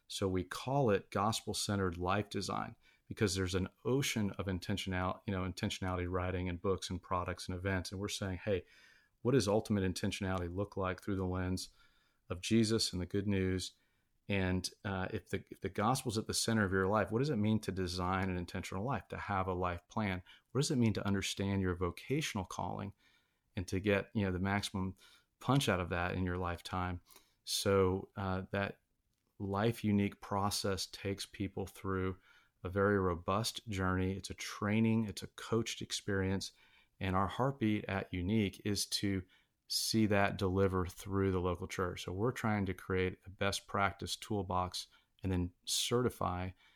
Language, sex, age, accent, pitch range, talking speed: English, male, 30-49, American, 90-100 Hz, 180 wpm